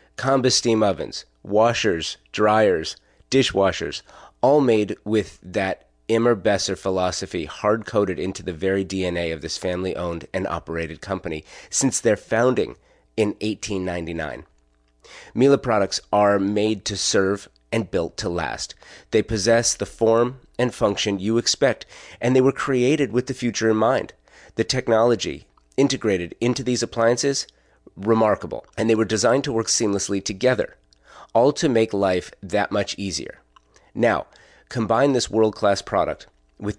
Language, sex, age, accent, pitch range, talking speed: English, male, 30-49, American, 95-115 Hz, 140 wpm